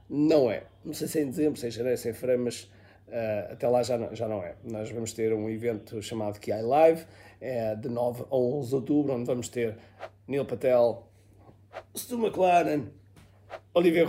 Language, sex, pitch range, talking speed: Portuguese, male, 105-150 Hz, 195 wpm